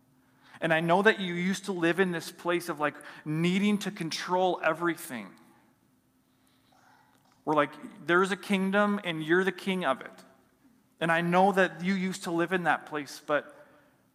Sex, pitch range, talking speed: male, 145-185 Hz, 170 wpm